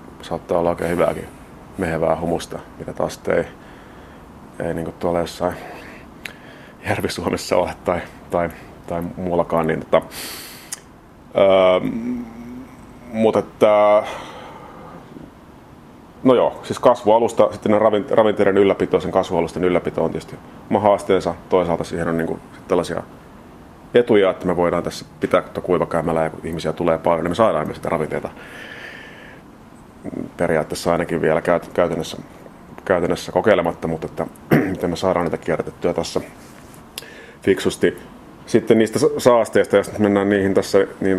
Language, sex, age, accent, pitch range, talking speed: Finnish, male, 30-49, native, 85-105 Hz, 120 wpm